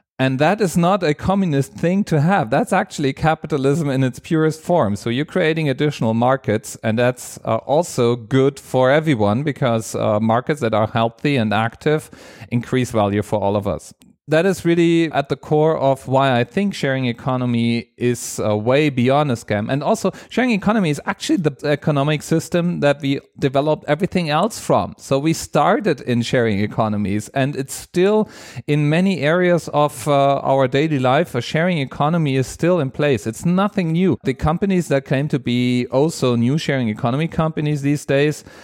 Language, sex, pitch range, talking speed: English, male, 120-160 Hz, 180 wpm